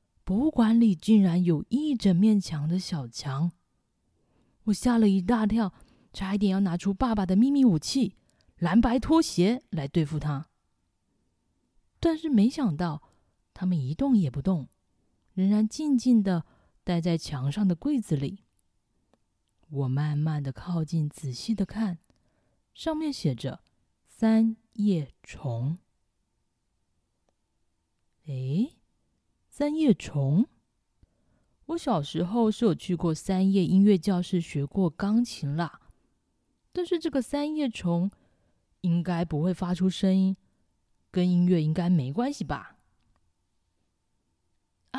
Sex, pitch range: female, 150-220 Hz